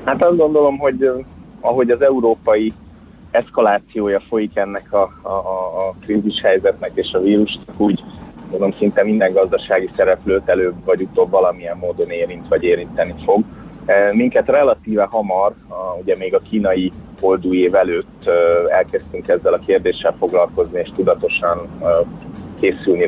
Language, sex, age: Hungarian, male, 30-49